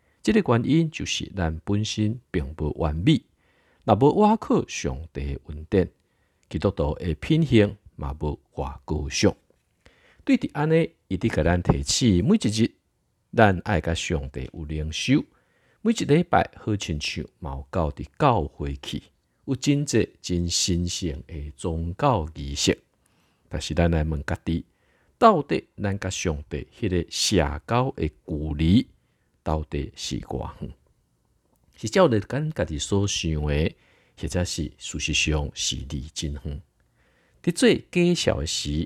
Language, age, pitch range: Chinese, 50-69, 75-105 Hz